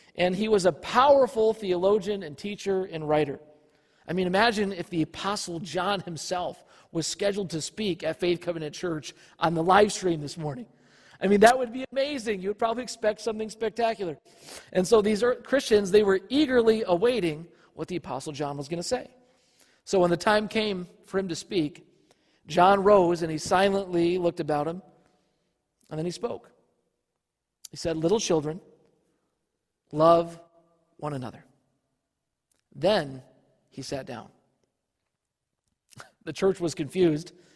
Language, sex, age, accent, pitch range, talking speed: English, male, 40-59, American, 170-220 Hz, 155 wpm